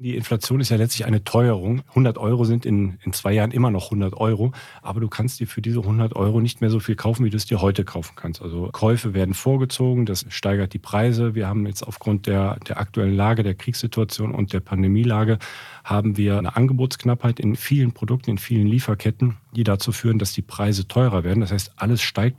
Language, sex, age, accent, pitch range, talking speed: German, male, 40-59, German, 100-115 Hz, 215 wpm